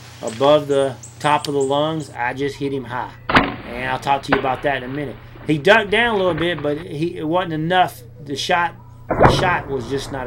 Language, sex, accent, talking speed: English, male, American, 230 wpm